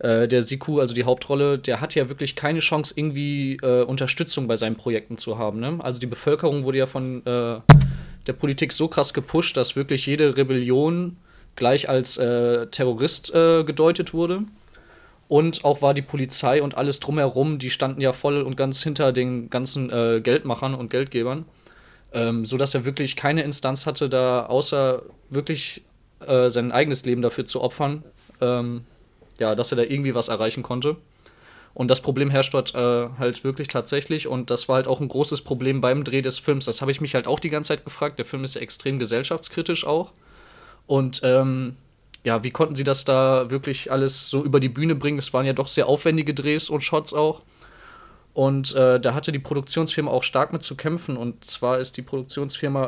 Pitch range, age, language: 125-150 Hz, 20-39, German